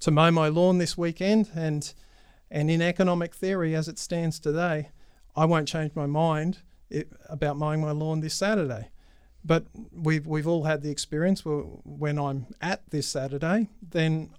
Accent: Australian